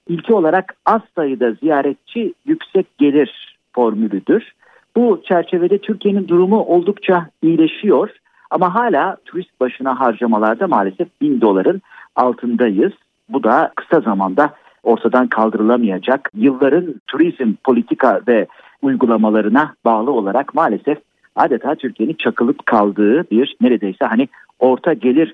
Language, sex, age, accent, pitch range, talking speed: Turkish, male, 50-69, native, 125-205 Hz, 110 wpm